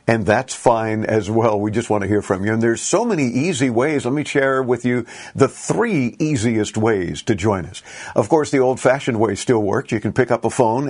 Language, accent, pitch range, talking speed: English, American, 105-130 Hz, 235 wpm